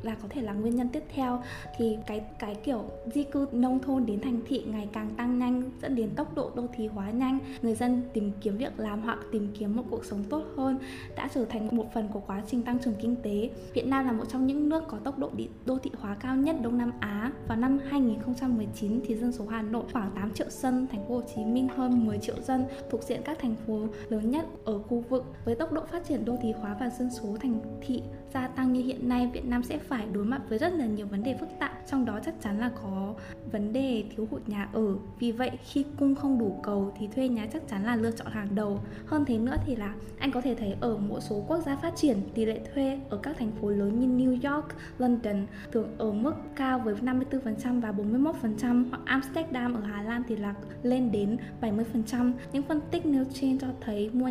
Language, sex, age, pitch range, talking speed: Vietnamese, female, 10-29, 220-260 Hz, 245 wpm